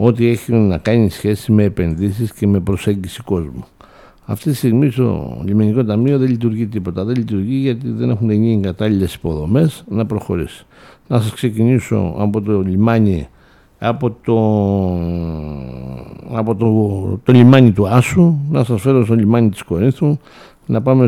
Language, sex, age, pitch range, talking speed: Greek, male, 60-79, 100-130 Hz, 150 wpm